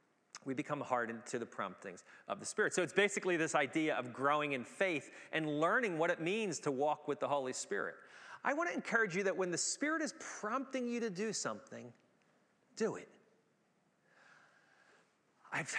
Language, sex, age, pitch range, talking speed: English, male, 40-59, 155-220 Hz, 180 wpm